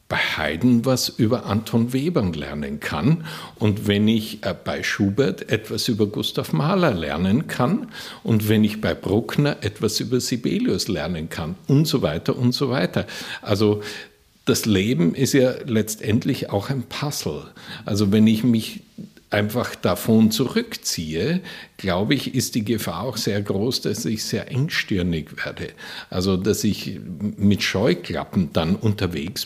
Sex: male